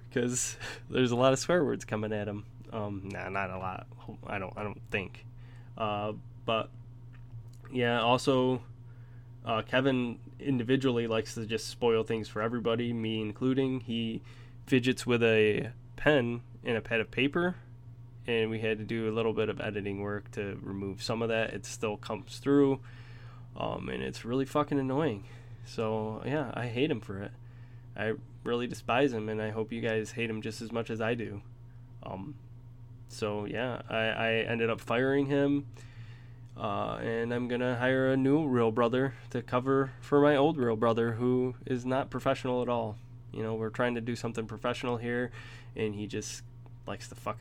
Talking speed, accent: 180 wpm, American